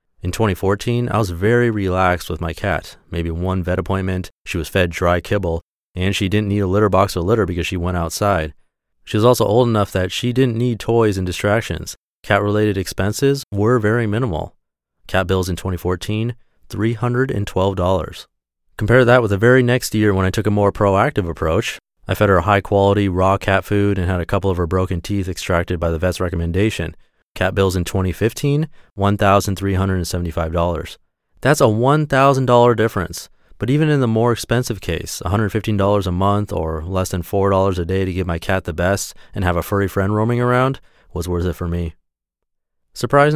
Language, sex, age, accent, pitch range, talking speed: English, male, 30-49, American, 90-110 Hz, 185 wpm